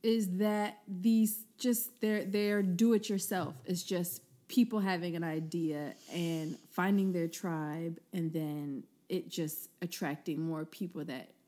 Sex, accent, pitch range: female, American, 170-210 Hz